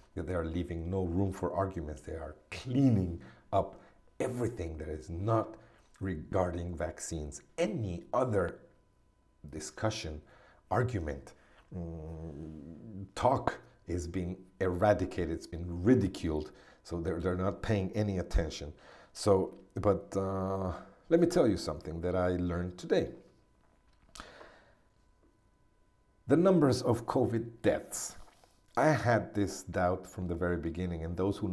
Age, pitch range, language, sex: 50-69, 85-110 Hz, English, male